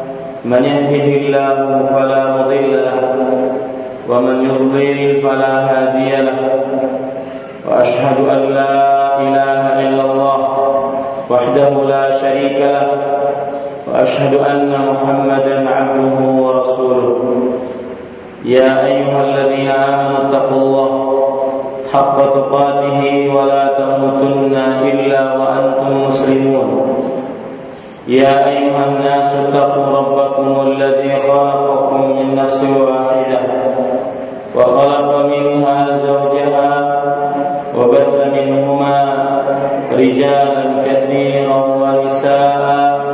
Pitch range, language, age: 135-140 Hz, Malay, 40-59